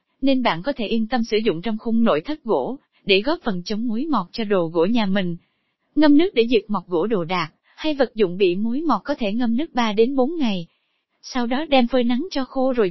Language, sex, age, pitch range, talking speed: Vietnamese, female, 20-39, 205-275 Hz, 250 wpm